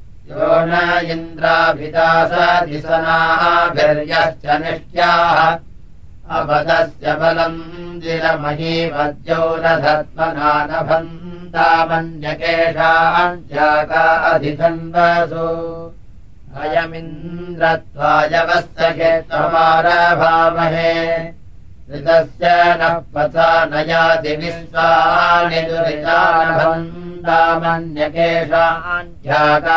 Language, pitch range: Russian, 160-165 Hz